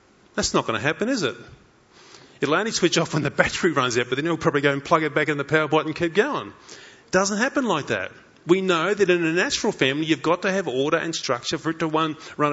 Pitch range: 150-195 Hz